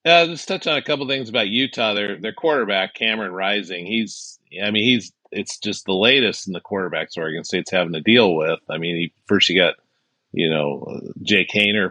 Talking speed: 210 wpm